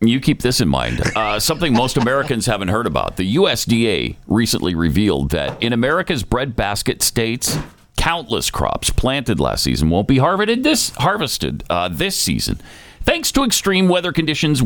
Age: 50-69